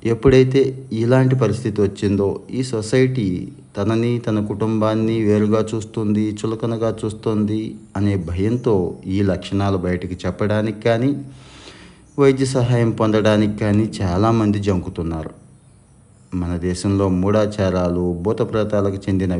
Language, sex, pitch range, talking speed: Telugu, male, 90-110 Hz, 95 wpm